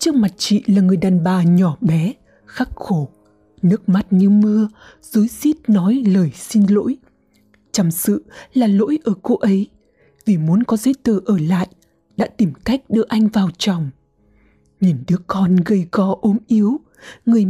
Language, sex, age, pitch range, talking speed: Vietnamese, female, 20-39, 180-225 Hz, 175 wpm